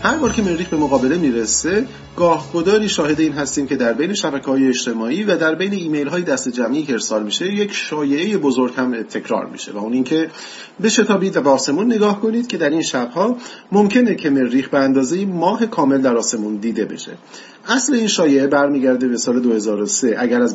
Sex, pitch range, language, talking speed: male, 130-195 Hz, Persian, 190 wpm